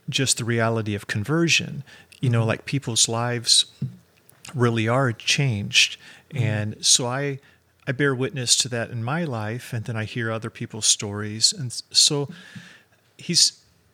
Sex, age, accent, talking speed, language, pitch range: male, 40-59, American, 145 wpm, English, 110-135 Hz